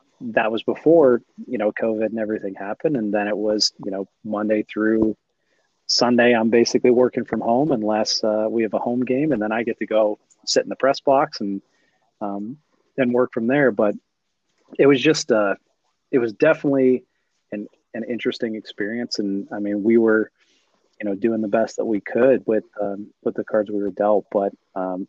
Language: English